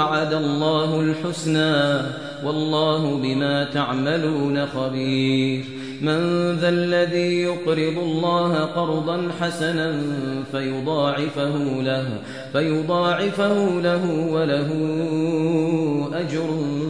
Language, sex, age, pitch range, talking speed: Arabic, male, 30-49, 140-170 Hz, 70 wpm